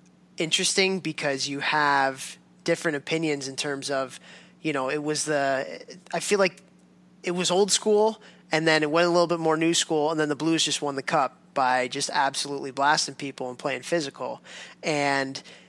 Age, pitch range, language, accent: 20-39, 140-170 Hz, English, American